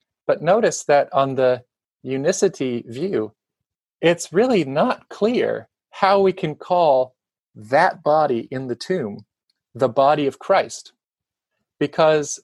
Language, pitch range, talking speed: English, 130-160 Hz, 120 wpm